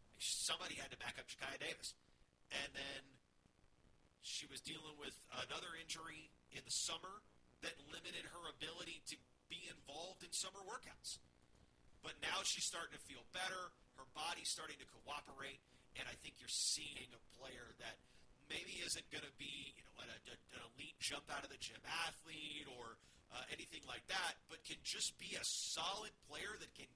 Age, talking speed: 40-59, 170 wpm